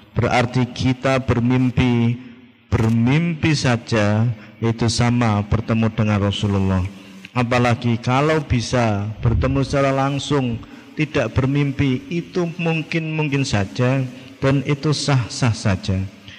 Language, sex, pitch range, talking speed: Indonesian, male, 110-130 Hz, 90 wpm